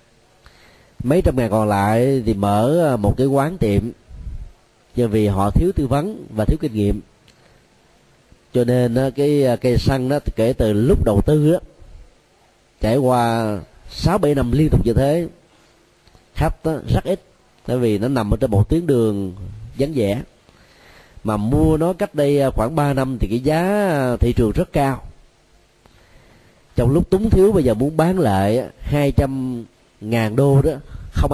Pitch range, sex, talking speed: 105-140 Hz, male, 165 wpm